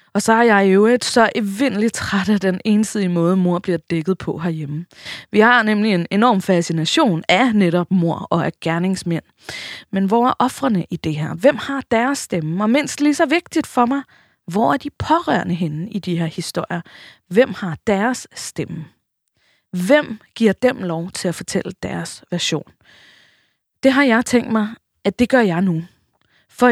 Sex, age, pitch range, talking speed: female, 20-39, 175-245 Hz, 180 wpm